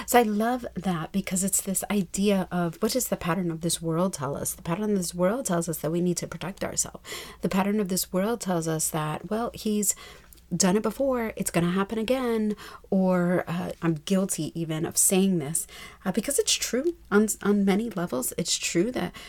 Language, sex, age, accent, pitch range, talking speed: English, female, 40-59, American, 170-200 Hz, 210 wpm